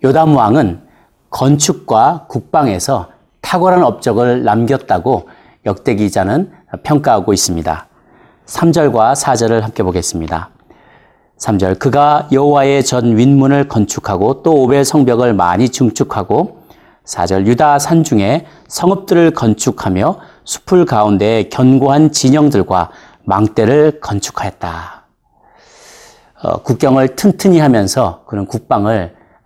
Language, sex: Korean, male